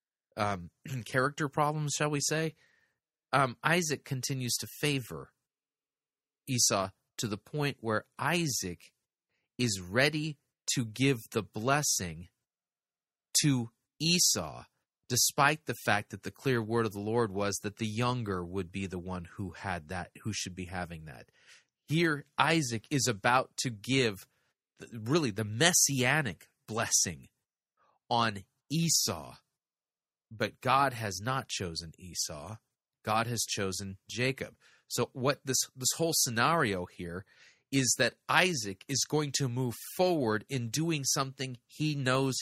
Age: 30-49